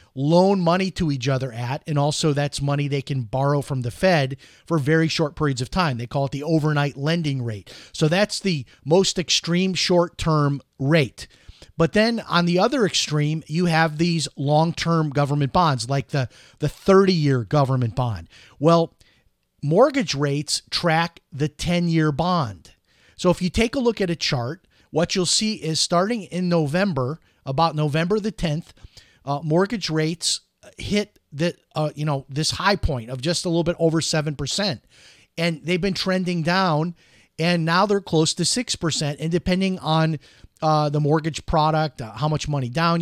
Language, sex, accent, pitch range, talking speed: English, male, American, 140-175 Hz, 175 wpm